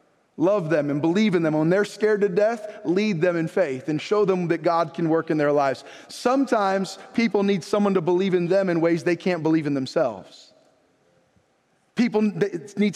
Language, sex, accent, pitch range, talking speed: English, male, American, 140-195 Hz, 195 wpm